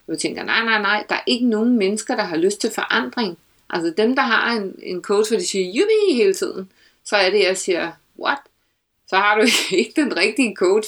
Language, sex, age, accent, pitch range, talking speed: Danish, female, 60-79, native, 200-330 Hz, 225 wpm